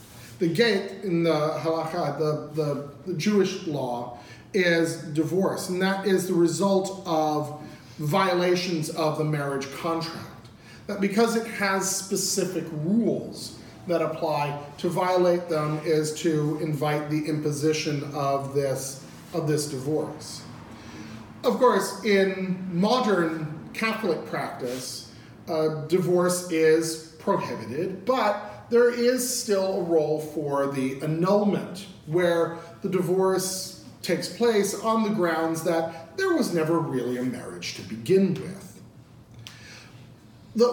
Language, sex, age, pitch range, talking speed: English, male, 40-59, 150-195 Hz, 120 wpm